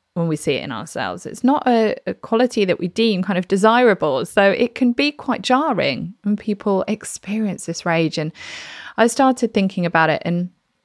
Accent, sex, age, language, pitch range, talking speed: British, female, 20-39, English, 165-215 Hz, 195 wpm